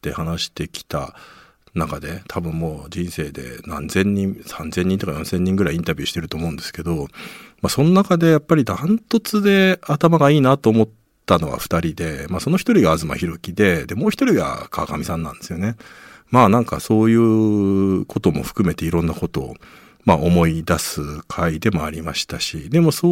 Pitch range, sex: 80-110 Hz, male